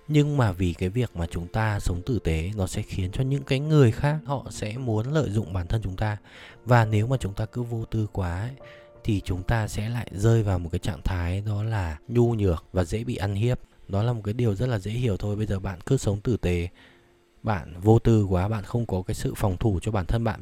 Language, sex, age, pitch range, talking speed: Vietnamese, male, 20-39, 95-120 Hz, 260 wpm